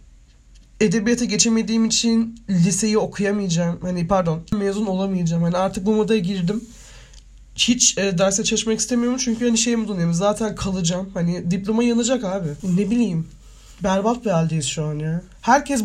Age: 30-49